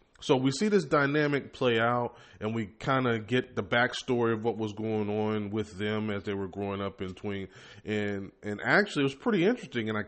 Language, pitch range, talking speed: English, 110-145 Hz, 220 wpm